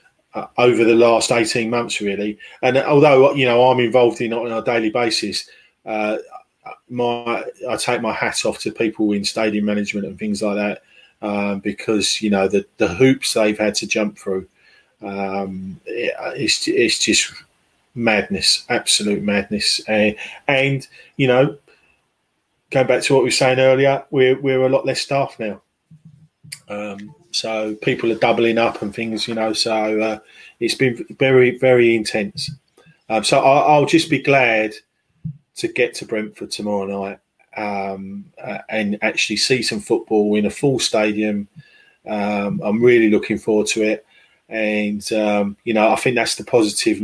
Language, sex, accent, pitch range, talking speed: English, male, British, 105-130 Hz, 165 wpm